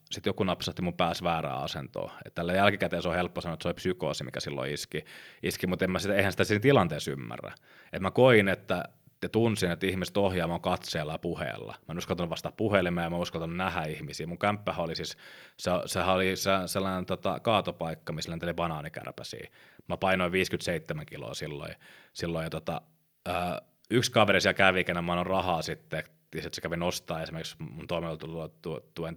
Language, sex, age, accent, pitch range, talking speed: Finnish, male, 30-49, native, 85-95 Hz, 185 wpm